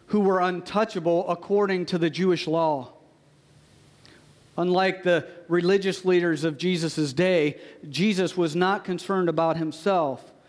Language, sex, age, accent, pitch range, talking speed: English, male, 50-69, American, 155-200 Hz, 120 wpm